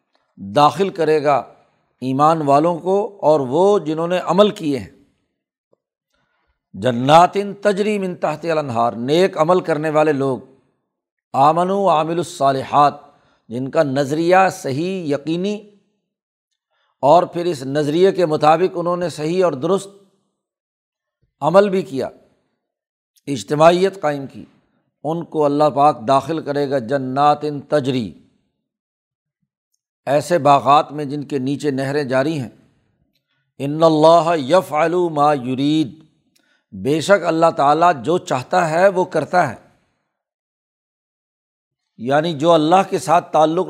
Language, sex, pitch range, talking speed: Urdu, male, 140-180 Hz, 120 wpm